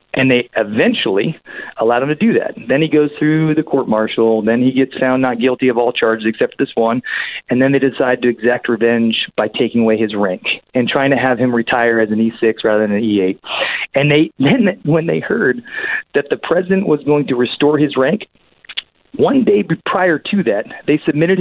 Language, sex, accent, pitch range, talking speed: English, male, American, 115-155 Hz, 205 wpm